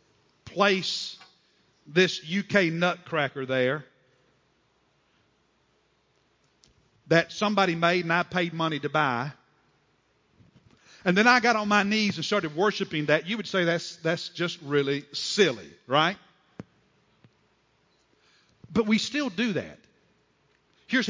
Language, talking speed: English, 115 wpm